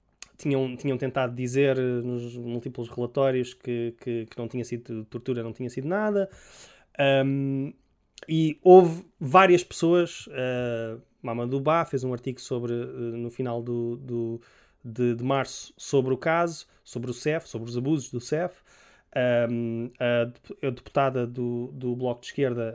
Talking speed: 155 wpm